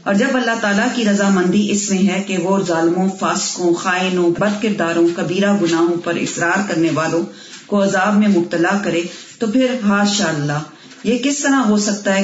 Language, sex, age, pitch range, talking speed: Urdu, female, 40-59, 170-205 Hz, 180 wpm